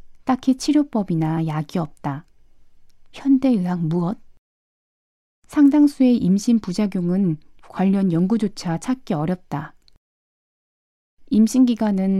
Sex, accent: female, native